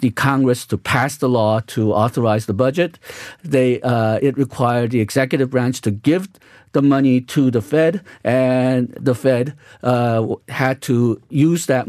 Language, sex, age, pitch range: Korean, male, 50-69, 115-145 Hz